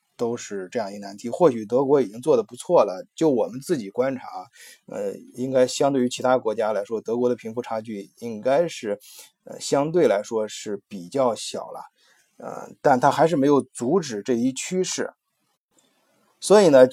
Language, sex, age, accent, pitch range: Chinese, male, 20-39, native, 110-140 Hz